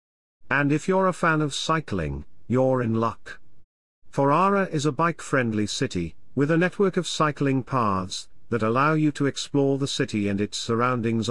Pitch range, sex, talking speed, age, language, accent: 100-145 Hz, male, 165 wpm, 50-69, English, British